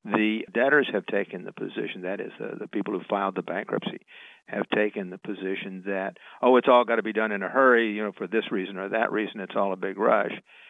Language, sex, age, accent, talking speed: English, male, 50-69, American, 240 wpm